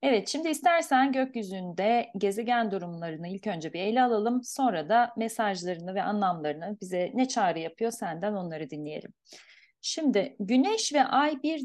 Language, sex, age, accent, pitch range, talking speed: Turkish, female, 40-59, native, 195-255 Hz, 145 wpm